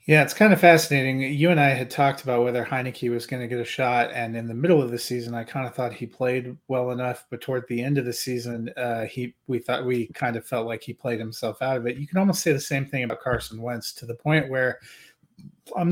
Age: 30-49